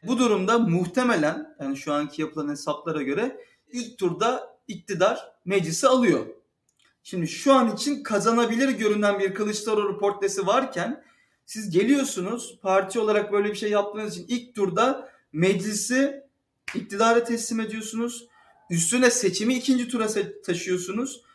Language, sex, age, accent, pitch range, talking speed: Turkish, male, 40-59, native, 160-220 Hz, 125 wpm